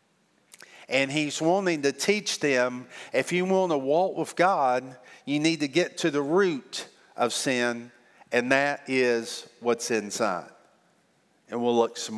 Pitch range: 115-140 Hz